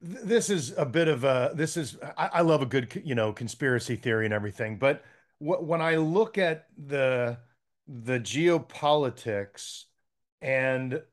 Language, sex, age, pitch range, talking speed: English, male, 40-59, 125-165 Hz, 145 wpm